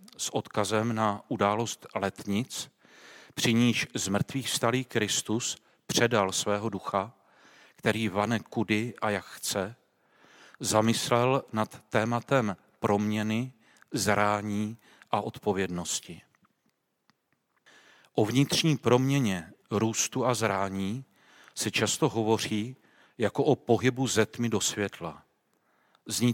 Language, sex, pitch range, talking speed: Czech, male, 105-125 Hz, 100 wpm